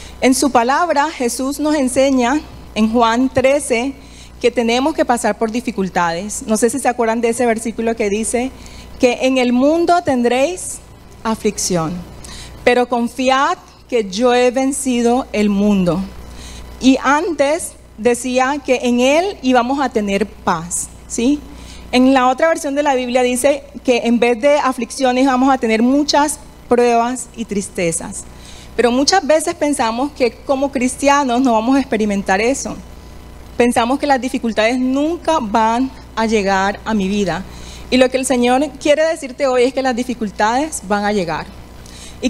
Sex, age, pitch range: female, 30-49, 225-275 Hz